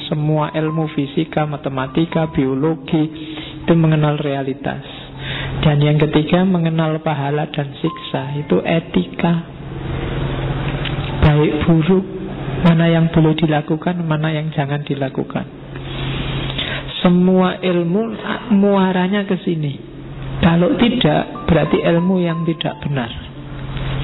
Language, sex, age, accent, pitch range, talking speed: Indonesian, male, 50-69, native, 140-165 Hz, 95 wpm